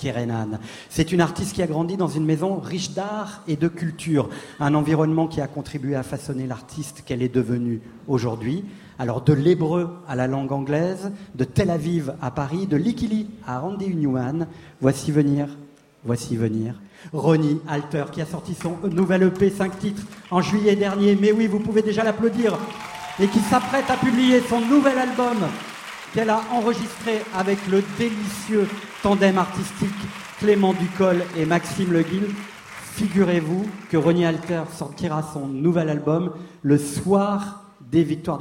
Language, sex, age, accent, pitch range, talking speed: French, male, 50-69, French, 140-195 Hz, 155 wpm